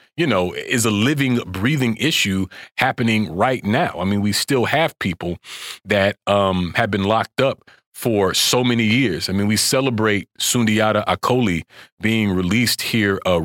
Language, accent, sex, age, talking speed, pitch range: English, American, male, 30-49, 160 wpm, 100-135 Hz